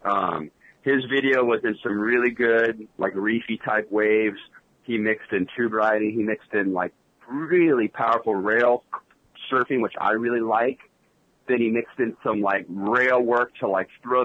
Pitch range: 105-120 Hz